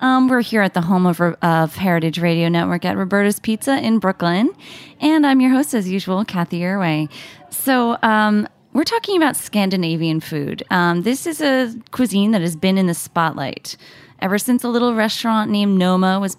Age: 20-39